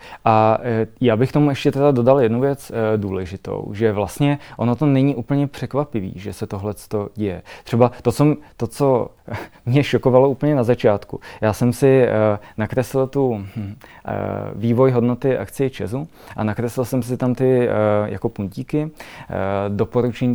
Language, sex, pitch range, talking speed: Czech, male, 105-125 Hz, 140 wpm